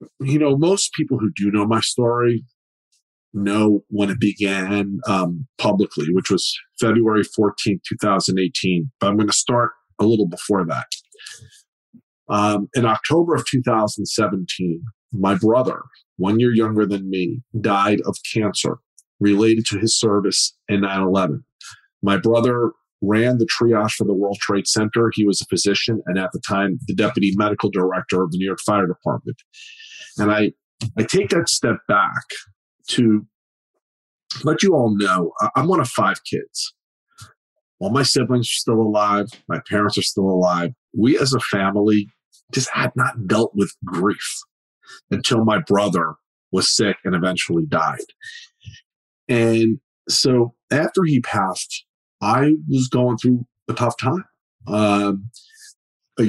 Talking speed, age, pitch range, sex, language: 145 wpm, 40-59, 100-125 Hz, male, English